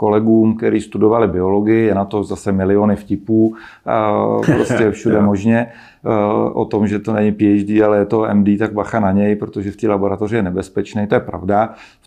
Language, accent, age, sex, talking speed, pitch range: Czech, native, 40-59, male, 185 wpm, 100-110 Hz